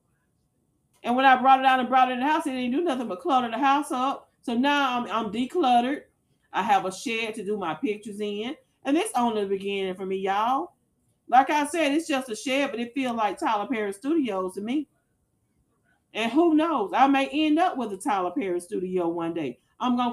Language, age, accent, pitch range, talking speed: English, 40-59, American, 225-300 Hz, 225 wpm